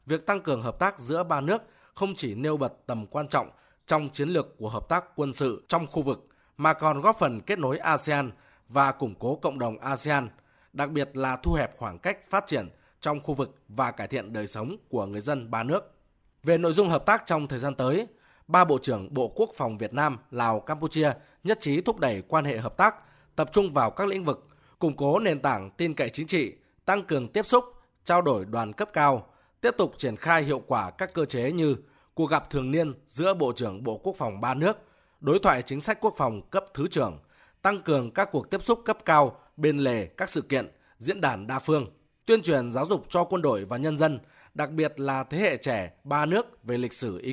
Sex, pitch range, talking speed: male, 130-175 Hz, 230 wpm